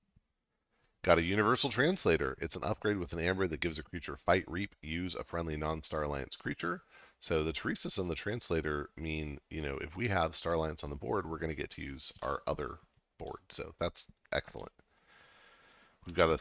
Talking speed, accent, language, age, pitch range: 200 wpm, American, English, 30-49, 75-95 Hz